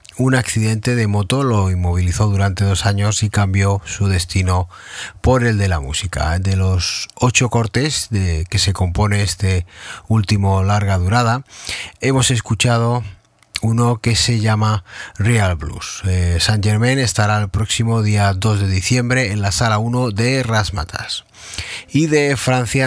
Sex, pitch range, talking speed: male, 100-120 Hz, 150 wpm